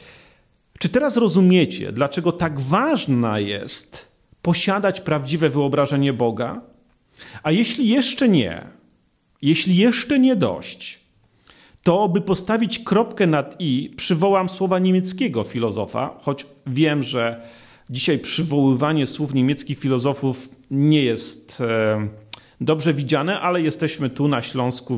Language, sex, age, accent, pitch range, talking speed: Polish, male, 40-59, native, 130-190 Hz, 110 wpm